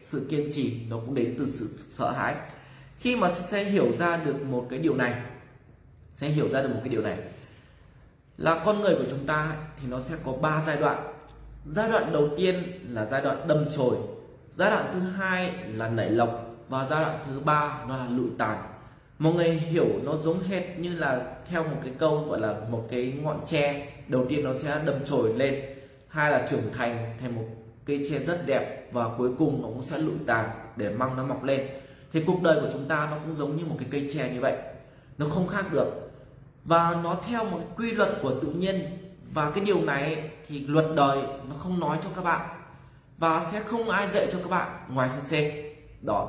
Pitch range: 130-165 Hz